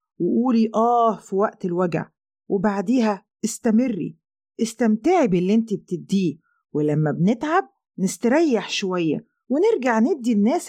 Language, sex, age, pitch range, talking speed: English, female, 40-59, 190-265 Hz, 100 wpm